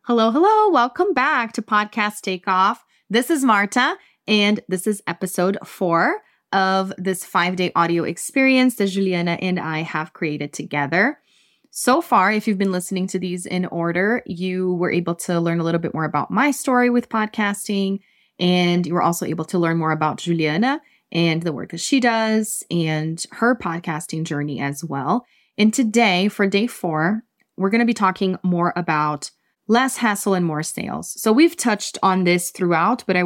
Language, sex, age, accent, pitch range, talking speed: English, female, 20-39, American, 170-215 Hz, 175 wpm